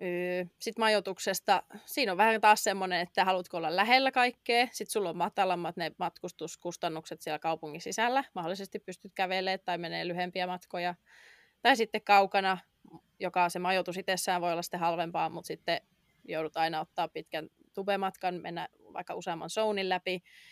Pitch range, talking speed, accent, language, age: 175-215 Hz, 150 wpm, native, Finnish, 20-39